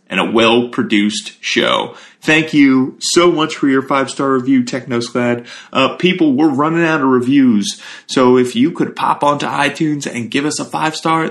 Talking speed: 170 wpm